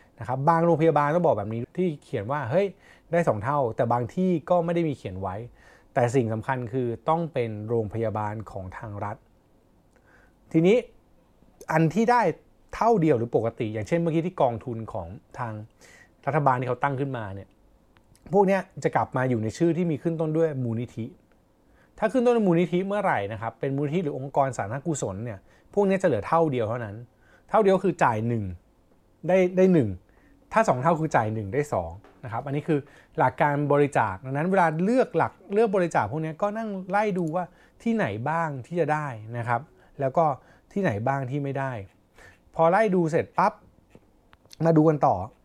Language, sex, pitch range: Thai, male, 115-170 Hz